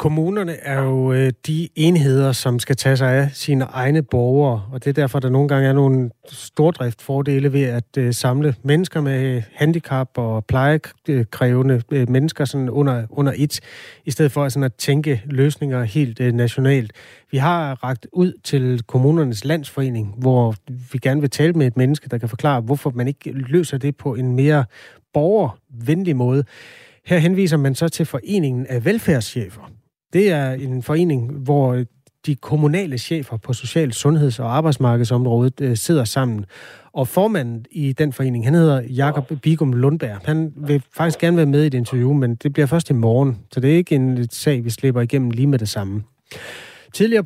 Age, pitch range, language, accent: 30-49, 125-150 Hz, Danish, native